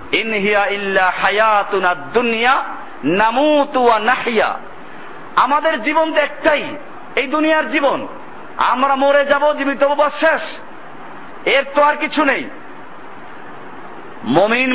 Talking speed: 75 wpm